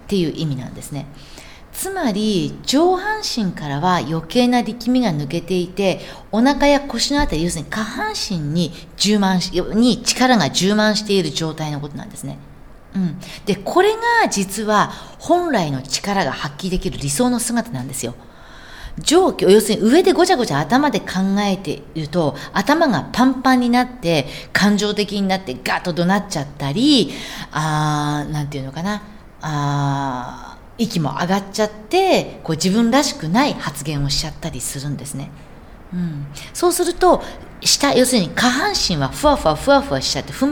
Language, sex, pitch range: Japanese, female, 155-250 Hz